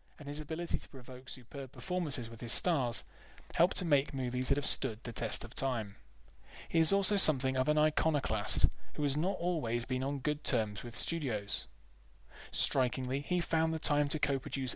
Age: 30-49